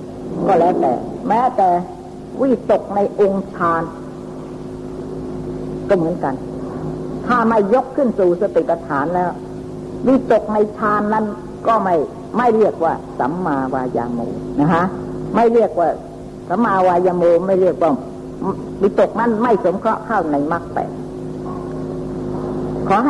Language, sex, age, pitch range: Thai, female, 60-79, 130-215 Hz